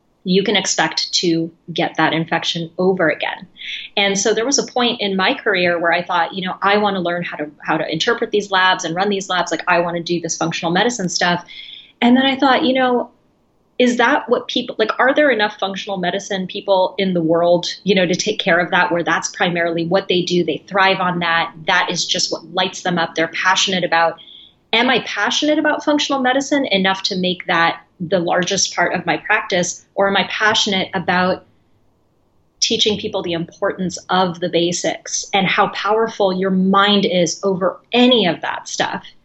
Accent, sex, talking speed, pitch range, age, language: American, female, 205 wpm, 170-205 Hz, 30-49, English